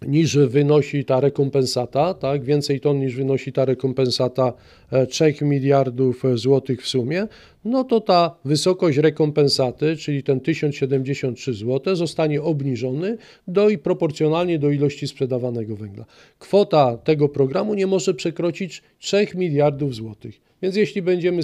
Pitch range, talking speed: 130-165 Hz, 130 wpm